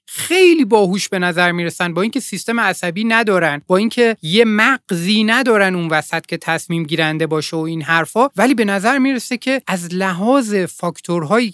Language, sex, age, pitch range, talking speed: Persian, male, 30-49, 180-250 Hz, 165 wpm